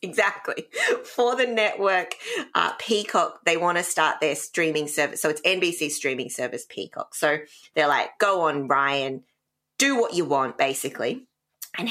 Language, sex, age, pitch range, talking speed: English, female, 20-39, 145-185 Hz, 155 wpm